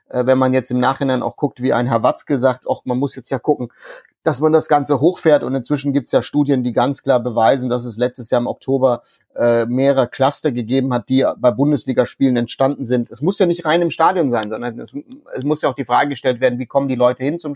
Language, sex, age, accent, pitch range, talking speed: German, male, 30-49, German, 125-140 Hz, 250 wpm